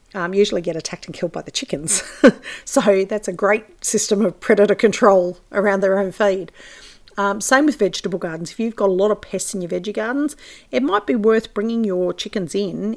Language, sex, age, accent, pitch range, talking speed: English, female, 40-59, Australian, 175-210 Hz, 210 wpm